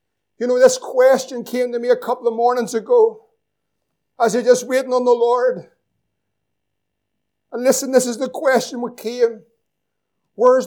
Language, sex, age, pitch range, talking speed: English, male, 50-69, 250-330 Hz, 155 wpm